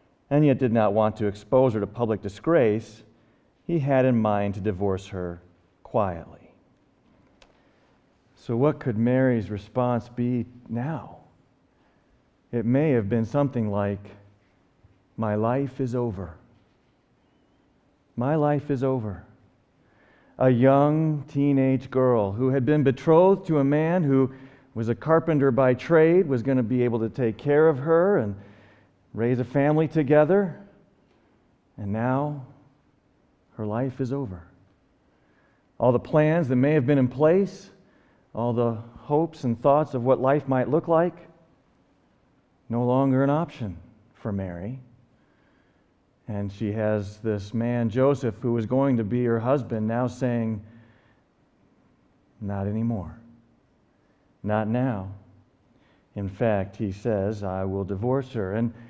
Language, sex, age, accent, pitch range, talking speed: English, male, 40-59, American, 105-135 Hz, 135 wpm